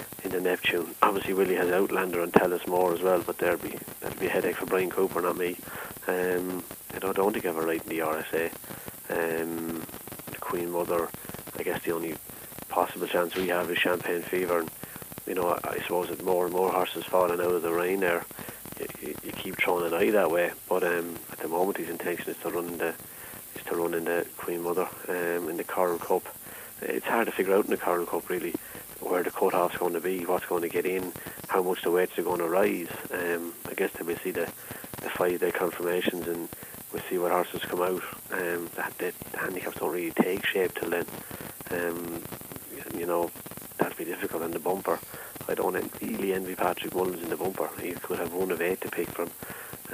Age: 30-49